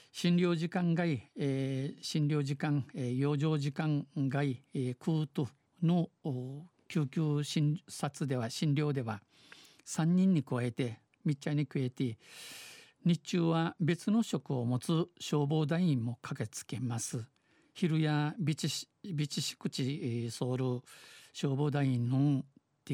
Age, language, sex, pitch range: 50-69, Japanese, male, 135-165 Hz